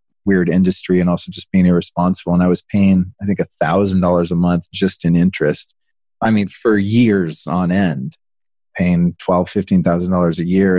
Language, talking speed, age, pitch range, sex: English, 165 wpm, 30-49, 90-115 Hz, male